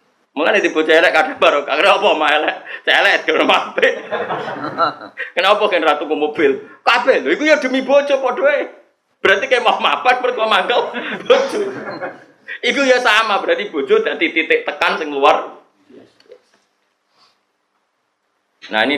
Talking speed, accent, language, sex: 135 wpm, native, Indonesian, male